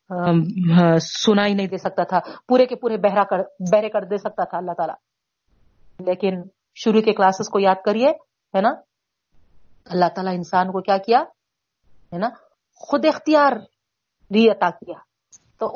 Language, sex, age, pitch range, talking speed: Urdu, female, 40-59, 185-255 Hz, 155 wpm